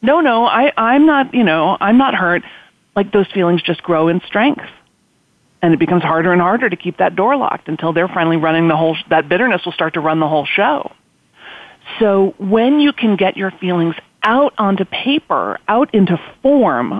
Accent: American